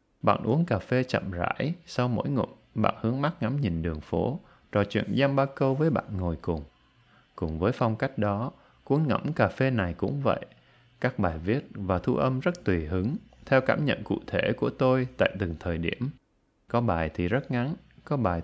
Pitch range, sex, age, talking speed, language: 90-130 Hz, male, 20-39, 210 wpm, Vietnamese